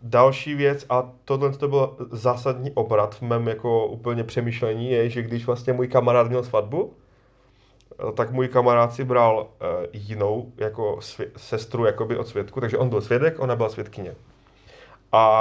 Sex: male